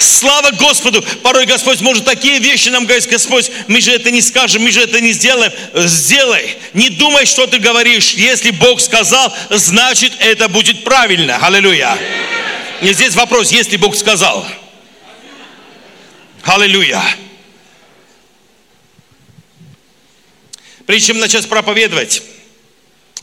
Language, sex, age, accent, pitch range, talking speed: Russian, male, 50-69, native, 155-220 Hz, 115 wpm